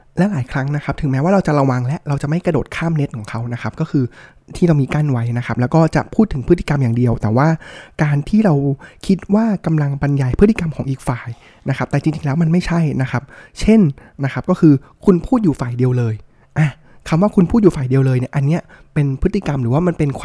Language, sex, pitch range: Thai, male, 130-165 Hz